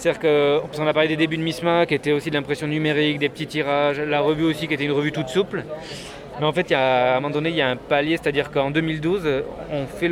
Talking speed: 280 wpm